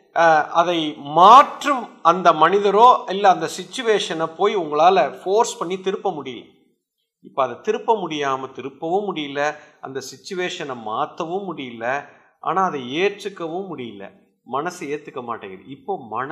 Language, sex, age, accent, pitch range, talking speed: Tamil, male, 50-69, native, 165-245 Hz, 120 wpm